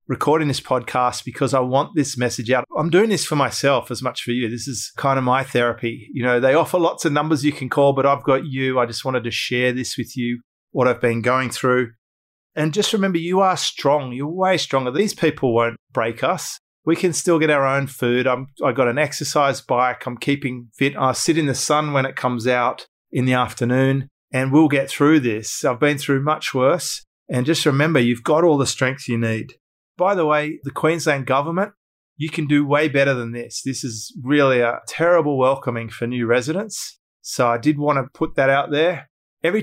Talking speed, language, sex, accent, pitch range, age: 220 wpm, English, male, Australian, 125-150 Hz, 30-49